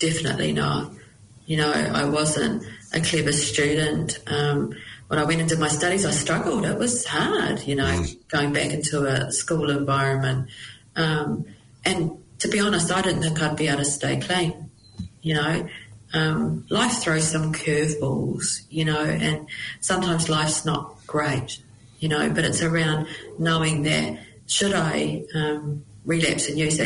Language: English